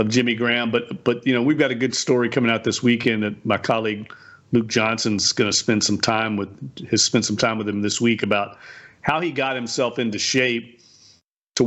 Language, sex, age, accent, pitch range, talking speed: English, male, 40-59, American, 110-125 Hz, 220 wpm